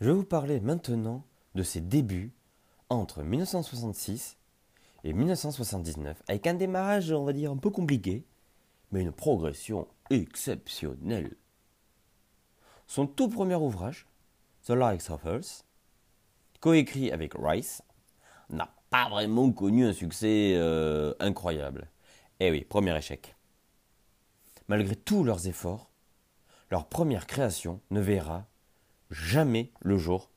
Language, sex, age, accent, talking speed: French, male, 30-49, French, 120 wpm